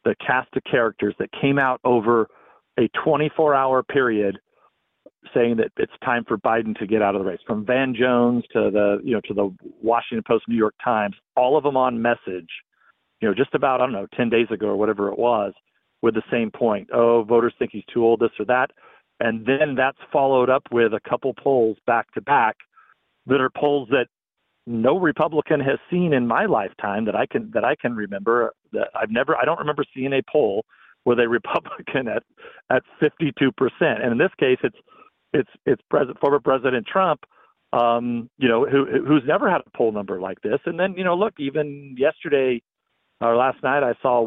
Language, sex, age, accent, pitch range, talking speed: English, male, 50-69, American, 115-140 Hz, 205 wpm